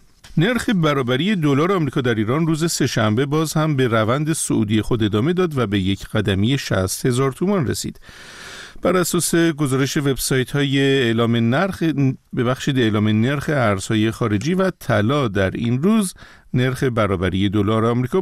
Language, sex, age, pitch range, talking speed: Persian, male, 50-69, 110-160 Hz, 150 wpm